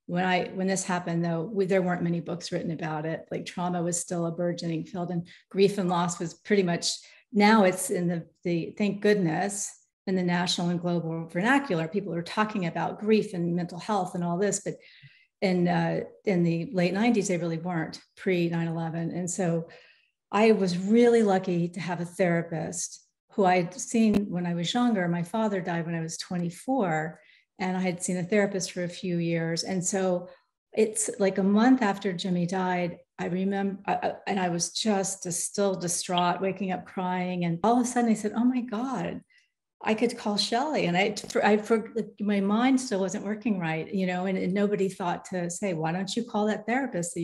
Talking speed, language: 195 wpm, English